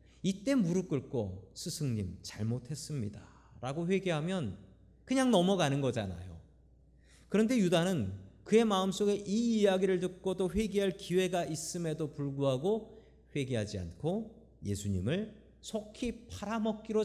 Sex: male